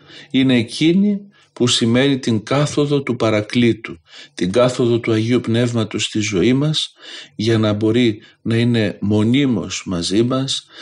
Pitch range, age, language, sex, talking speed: 105-130 Hz, 50-69, Greek, male, 135 wpm